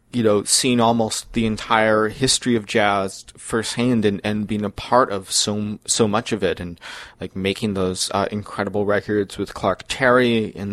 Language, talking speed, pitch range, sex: English, 180 wpm, 95-110 Hz, male